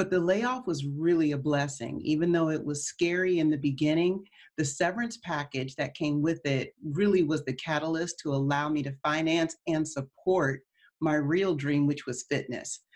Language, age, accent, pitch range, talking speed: English, 40-59, American, 140-165 Hz, 180 wpm